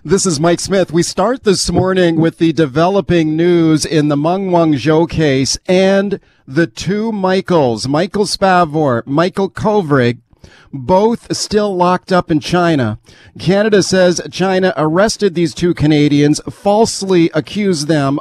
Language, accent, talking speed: English, American, 135 wpm